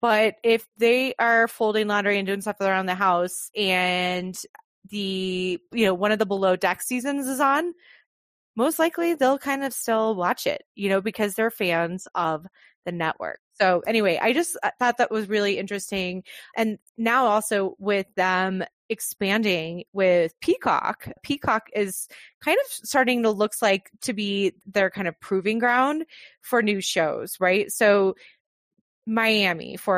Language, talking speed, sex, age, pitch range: English, 160 wpm, female, 20-39, 185-235 Hz